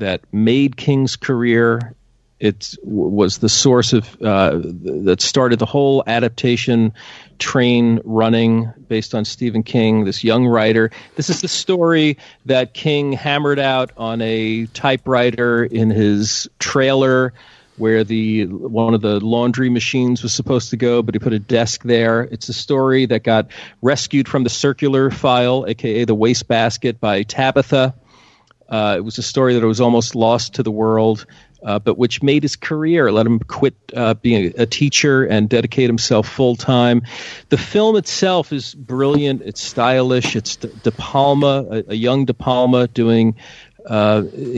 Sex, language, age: male, English, 40-59